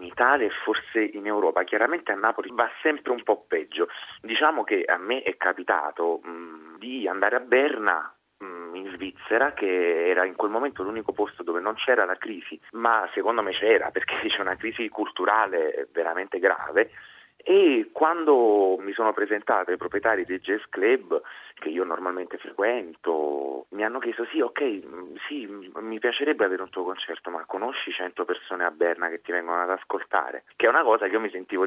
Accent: native